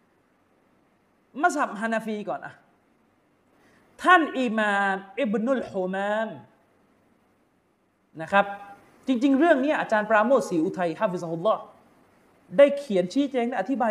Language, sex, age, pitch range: Thai, male, 30-49, 195-275 Hz